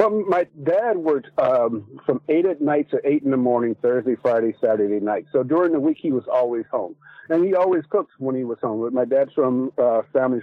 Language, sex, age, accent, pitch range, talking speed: English, male, 50-69, American, 125-160 Hz, 230 wpm